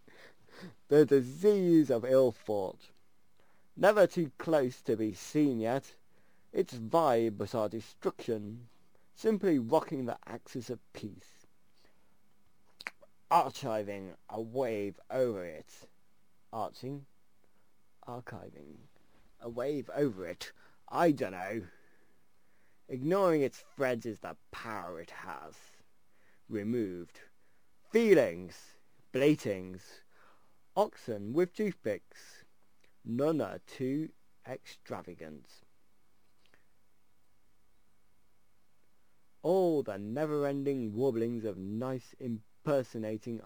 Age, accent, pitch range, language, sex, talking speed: 30-49, British, 100-140 Hz, English, male, 85 wpm